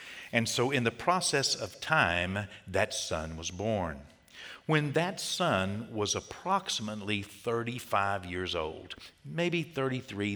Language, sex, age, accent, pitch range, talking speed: English, male, 60-79, American, 95-125 Hz, 120 wpm